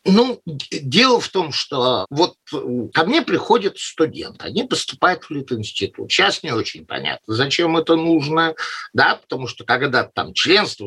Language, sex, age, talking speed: Russian, male, 50-69, 150 wpm